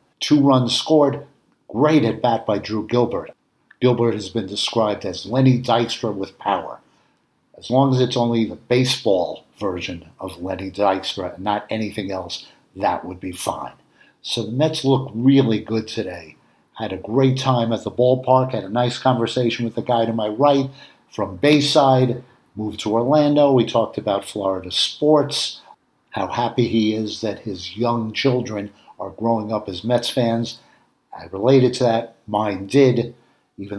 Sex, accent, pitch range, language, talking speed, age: male, American, 105-130 Hz, English, 165 wpm, 60-79